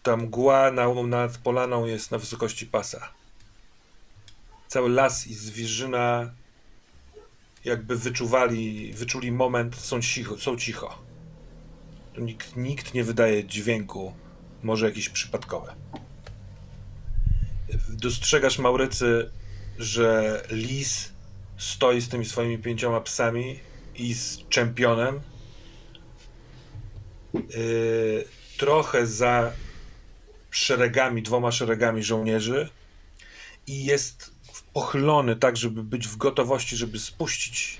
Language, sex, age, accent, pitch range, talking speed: Polish, male, 40-59, native, 110-125 Hz, 95 wpm